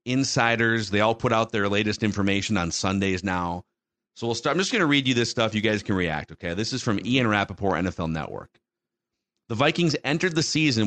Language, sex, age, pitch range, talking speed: English, male, 40-59, 100-135 Hz, 210 wpm